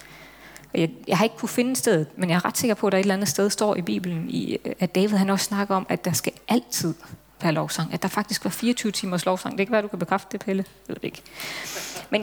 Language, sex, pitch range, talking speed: Danish, female, 185-235 Hz, 250 wpm